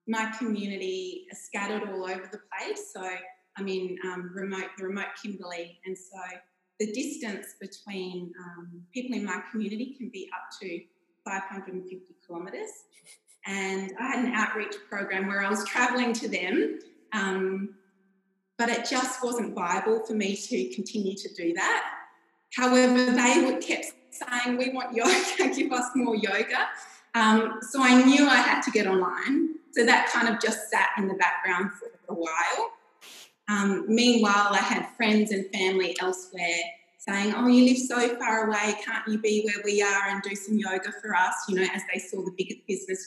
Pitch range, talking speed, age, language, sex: 190-250 Hz, 170 wpm, 20-39, English, female